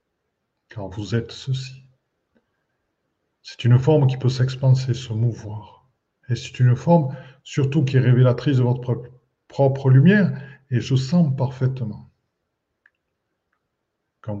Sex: male